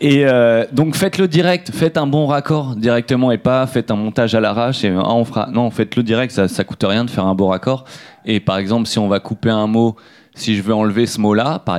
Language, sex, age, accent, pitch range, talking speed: French, male, 30-49, French, 105-130 Hz, 260 wpm